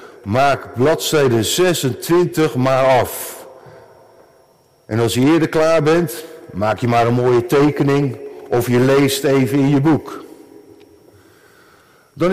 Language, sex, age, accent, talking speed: Dutch, male, 50-69, Dutch, 120 wpm